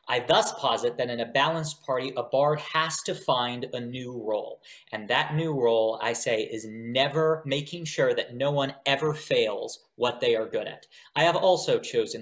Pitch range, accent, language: 125-160 Hz, American, English